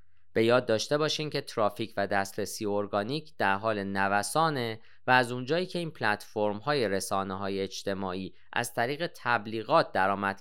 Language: Persian